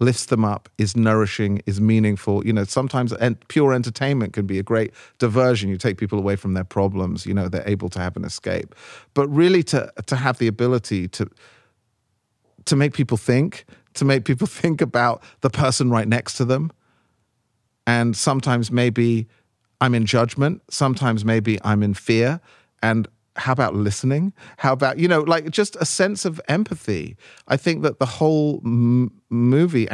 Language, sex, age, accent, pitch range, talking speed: English, male, 40-59, British, 105-135 Hz, 175 wpm